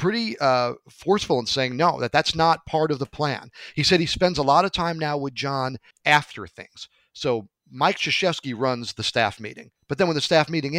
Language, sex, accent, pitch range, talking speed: English, male, American, 115-150 Hz, 215 wpm